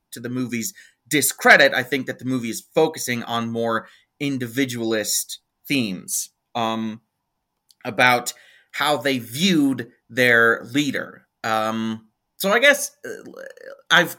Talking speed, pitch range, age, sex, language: 115 wpm, 125-165 Hz, 30-49, male, English